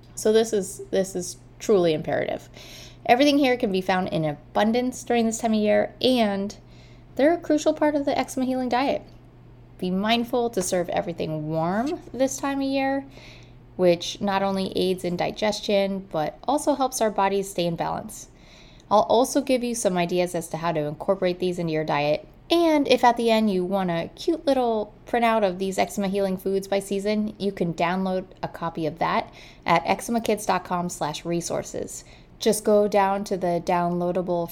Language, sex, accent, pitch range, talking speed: English, female, American, 175-235 Hz, 175 wpm